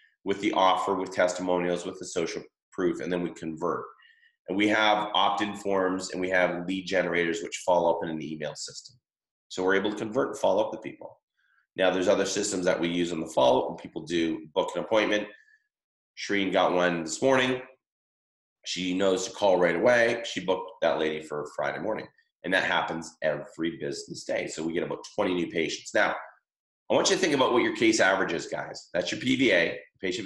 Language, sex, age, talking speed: English, male, 30-49, 210 wpm